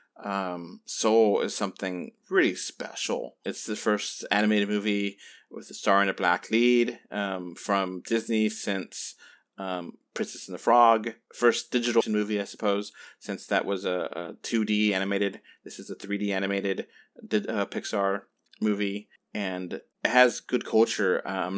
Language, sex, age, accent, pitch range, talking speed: English, male, 30-49, American, 95-105 Hz, 145 wpm